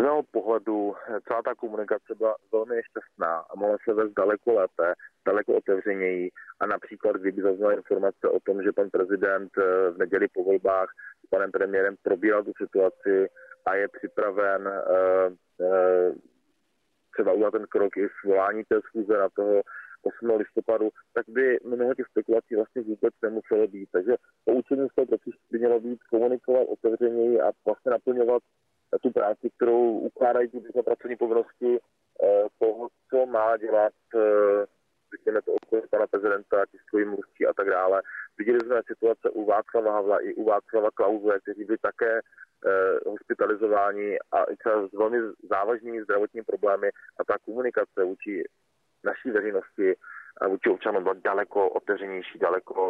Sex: male